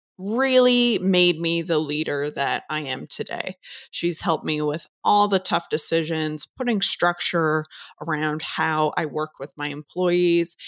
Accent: American